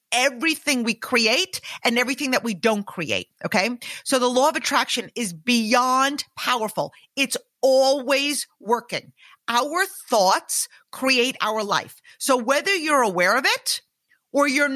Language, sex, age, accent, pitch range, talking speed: English, female, 50-69, American, 235-310 Hz, 140 wpm